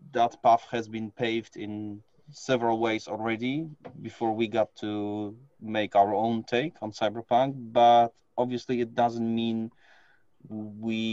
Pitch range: 100-115 Hz